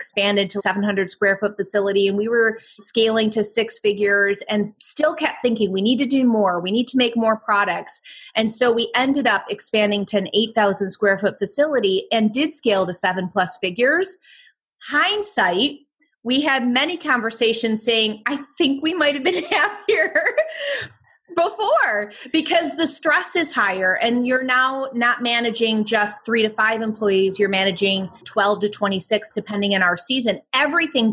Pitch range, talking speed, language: 205-280 Hz, 165 wpm, English